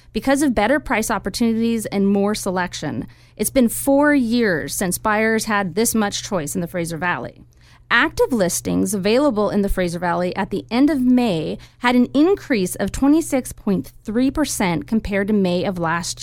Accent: American